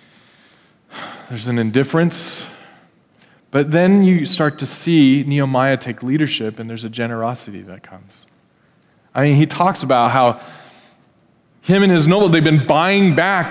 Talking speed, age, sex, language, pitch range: 140 wpm, 20-39, male, English, 135-190 Hz